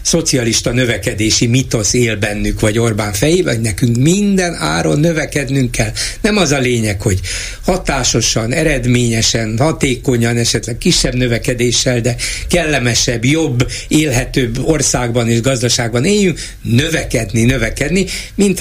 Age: 60-79